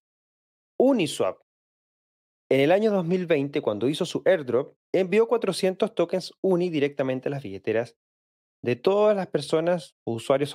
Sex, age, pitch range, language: male, 30-49, 125-175 Hz, Spanish